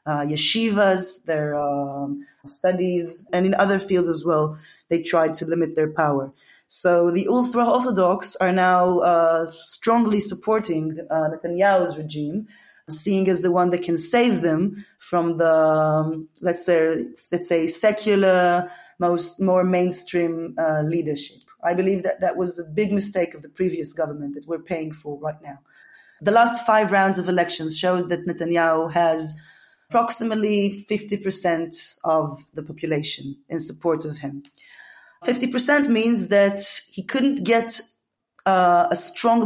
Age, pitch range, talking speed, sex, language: 20-39, 160-200 Hz, 145 wpm, female, English